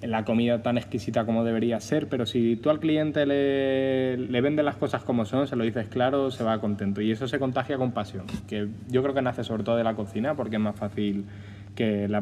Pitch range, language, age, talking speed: 105-130 Hz, Spanish, 20-39, 235 wpm